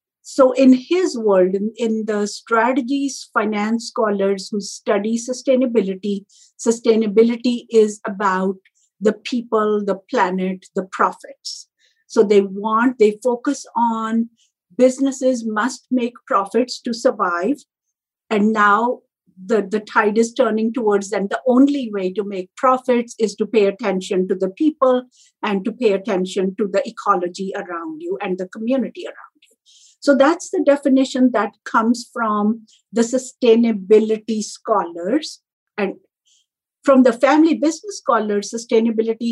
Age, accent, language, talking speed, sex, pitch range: 50-69, Indian, English, 135 wpm, female, 205-255 Hz